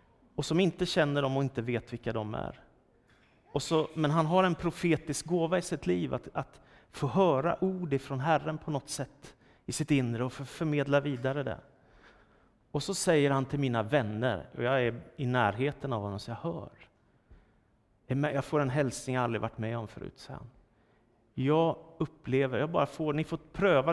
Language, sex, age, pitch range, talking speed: Swedish, male, 30-49, 115-150 Hz, 190 wpm